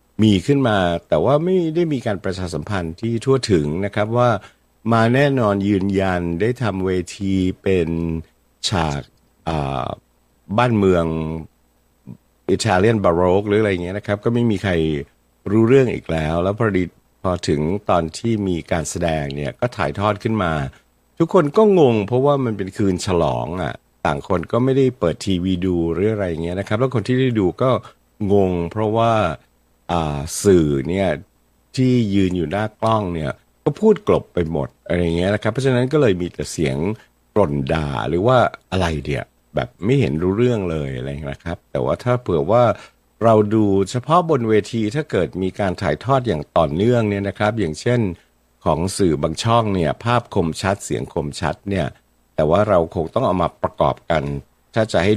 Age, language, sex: 60-79, Thai, male